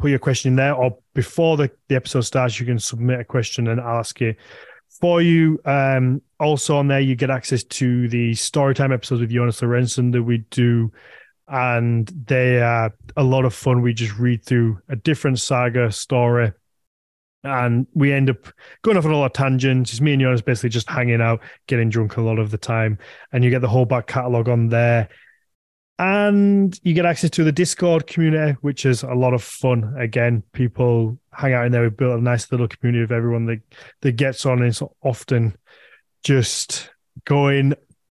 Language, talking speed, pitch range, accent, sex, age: English, 195 wpm, 120-145 Hz, British, male, 20-39